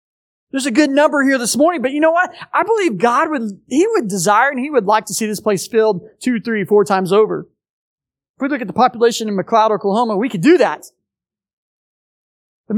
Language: English